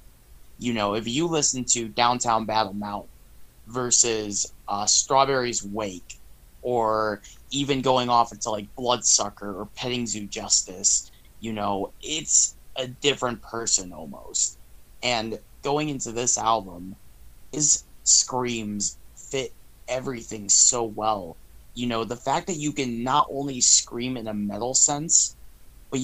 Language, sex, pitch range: English, male, 105-130 Hz